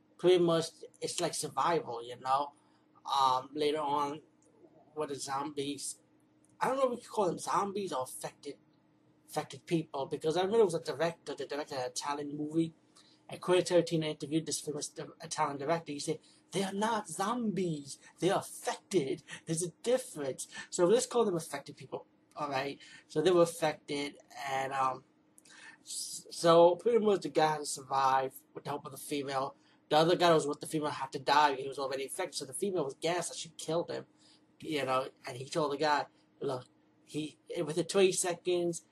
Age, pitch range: 30-49, 140-170 Hz